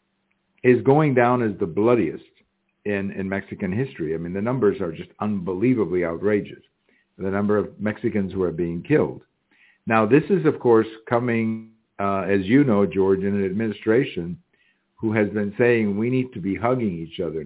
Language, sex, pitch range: English, male, 100-155 Hz